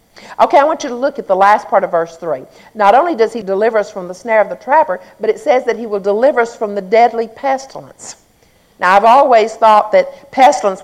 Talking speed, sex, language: 240 wpm, female, English